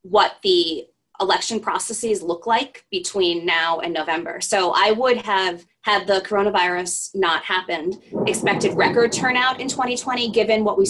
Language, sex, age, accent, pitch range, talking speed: English, female, 20-39, American, 175-210 Hz, 150 wpm